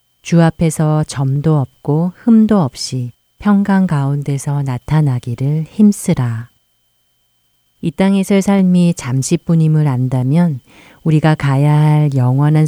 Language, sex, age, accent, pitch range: Korean, female, 40-59, native, 130-165 Hz